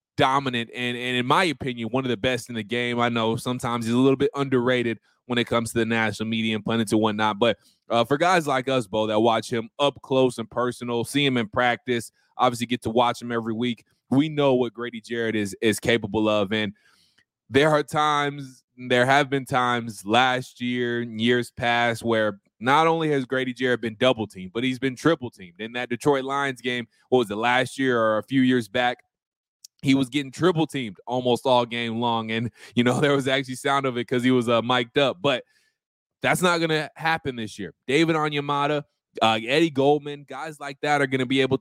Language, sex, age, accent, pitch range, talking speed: English, male, 20-39, American, 115-140 Hz, 220 wpm